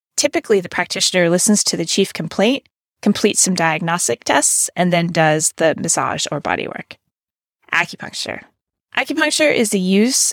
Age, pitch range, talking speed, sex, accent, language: 30-49, 170-220 Hz, 140 wpm, female, American, English